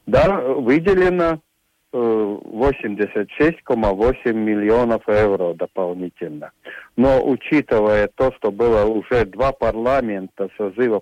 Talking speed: 80 wpm